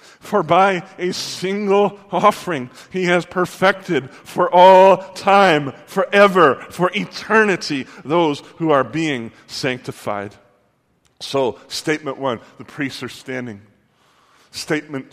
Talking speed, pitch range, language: 105 wpm, 150-185 Hz, English